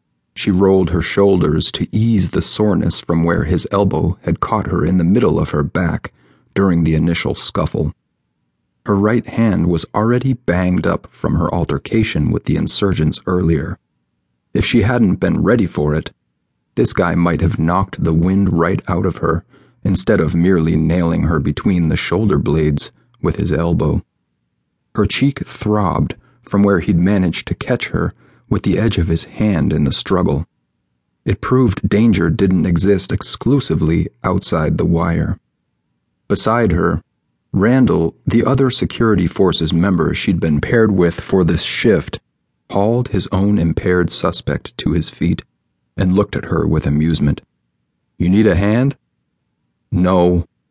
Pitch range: 75-100 Hz